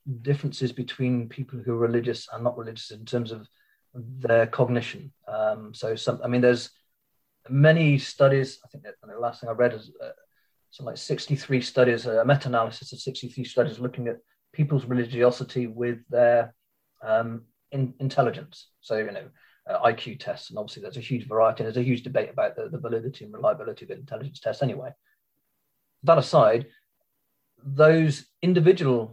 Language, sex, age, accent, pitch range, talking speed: English, male, 30-49, British, 120-140 Hz, 165 wpm